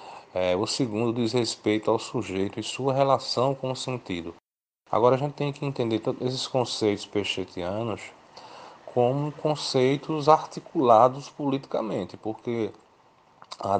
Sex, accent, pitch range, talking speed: male, Brazilian, 105-130 Hz, 120 wpm